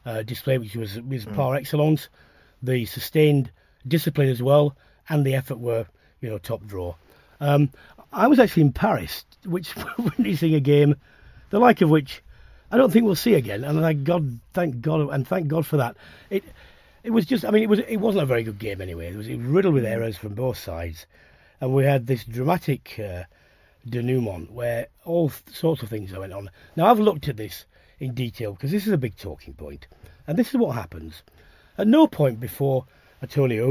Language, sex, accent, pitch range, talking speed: English, male, British, 105-155 Hz, 200 wpm